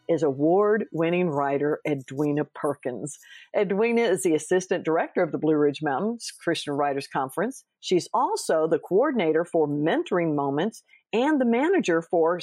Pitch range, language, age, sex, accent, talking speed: 155-215 Hz, English, 50-69, female, American, 140 wpm